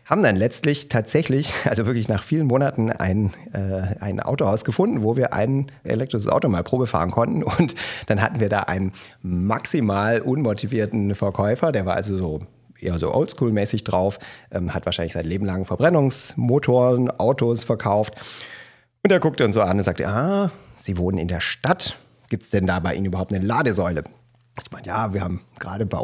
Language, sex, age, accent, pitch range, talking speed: German, male, 40-59, German, 95-120 Hz, 180 wpm